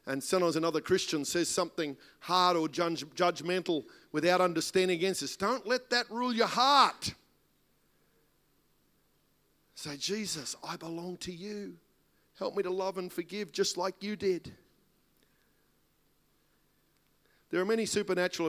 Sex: male